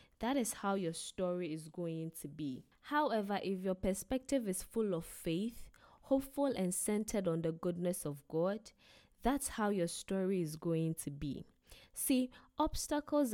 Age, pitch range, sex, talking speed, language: 10-29, 165-220 Hz, female, 155 wpm, English